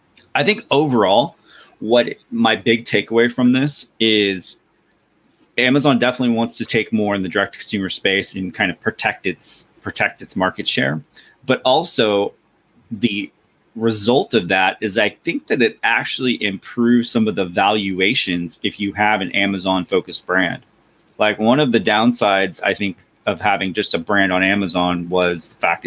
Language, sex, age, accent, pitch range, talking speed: English, male, 30-49, American, 90-115 Hz, 165 wpm